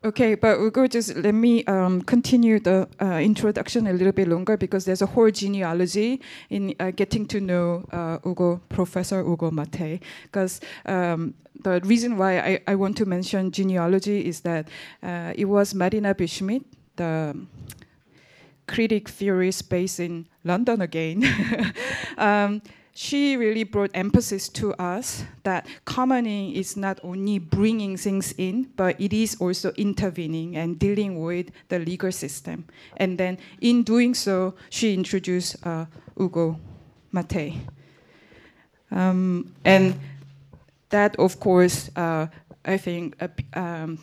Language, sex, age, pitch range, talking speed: English, female, 20-39, 170-205 Hz, 135 wpm